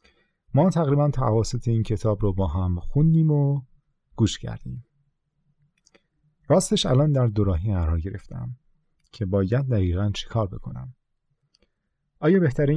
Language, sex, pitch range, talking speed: Persian, male, 100-140 Hz, 120 wpm